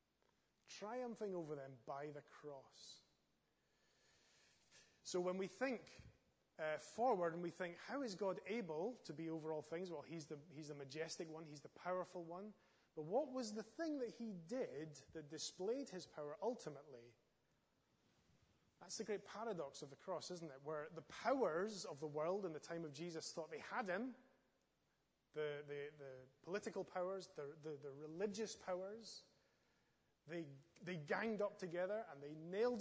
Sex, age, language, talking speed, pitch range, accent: male, 30-49, English, 165 wpm, 150-195 Hz, British